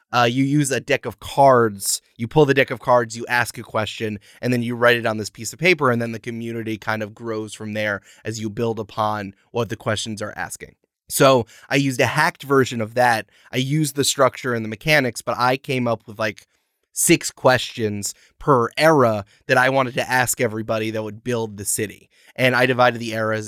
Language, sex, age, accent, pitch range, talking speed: English, male, 20-39, American, 110-140 Hz, 220 wpm